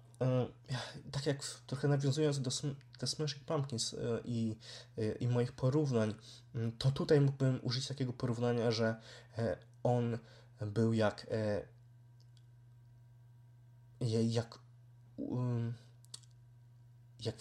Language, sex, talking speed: Polish, male, 100 wpm